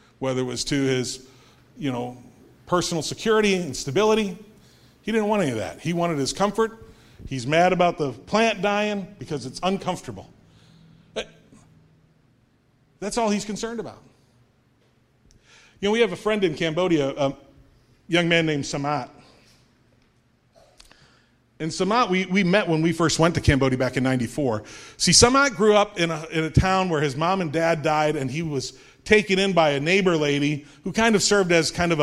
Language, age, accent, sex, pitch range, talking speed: English, 40-59, American, male, 125-170 Hz, 170 wpm